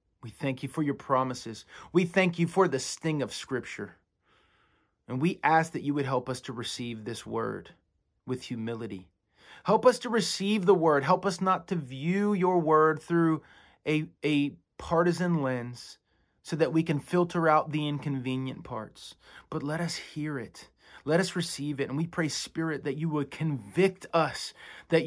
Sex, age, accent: male, 30-49, American